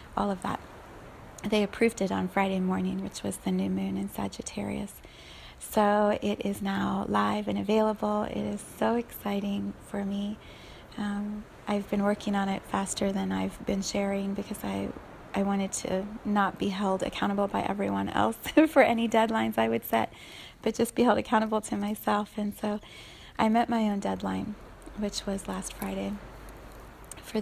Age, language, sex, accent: 30-49, English, female, American